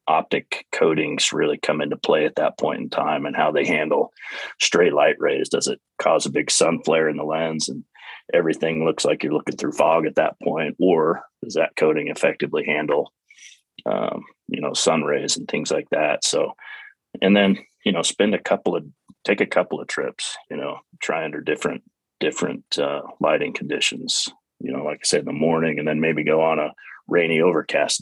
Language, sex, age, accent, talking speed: English, male, 30-49, American, 200 wpm